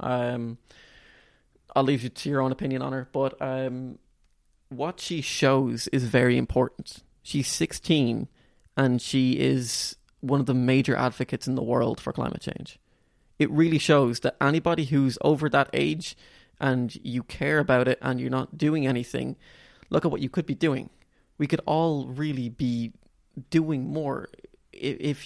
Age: 20-39